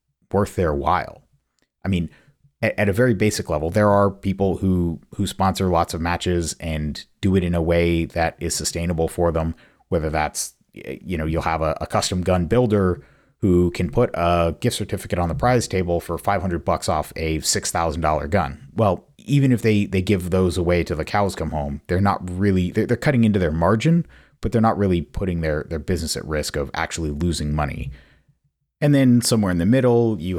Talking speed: 200 wpm